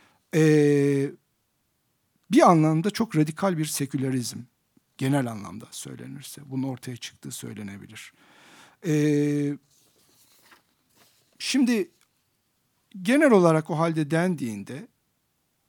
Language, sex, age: Turkish, male, 60-79